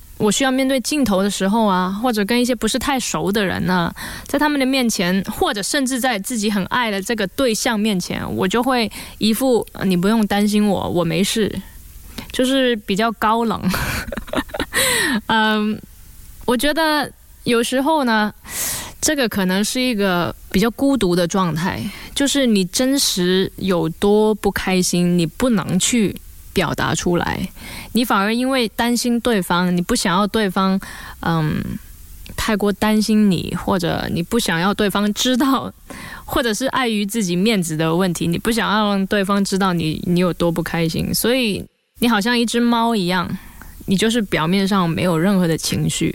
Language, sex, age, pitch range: Chinese, female, 20-39, 185-235 Hz